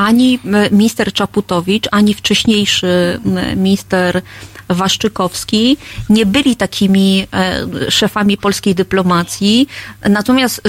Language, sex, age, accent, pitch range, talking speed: Polish, female, 30-49, native, 190-230 Hz, 80 wpm